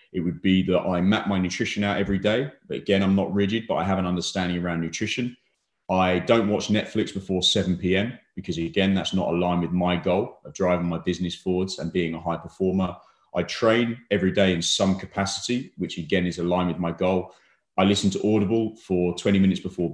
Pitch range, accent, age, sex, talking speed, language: 90-110 Hz, British, 30-49, male, 210 wpm, English